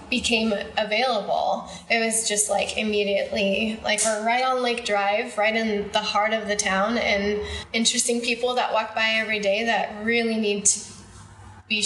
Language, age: English, 10-29